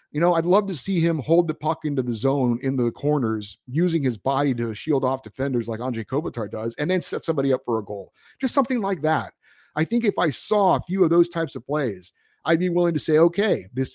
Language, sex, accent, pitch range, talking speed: English, male, American, 120-170 Hz, 250 wpm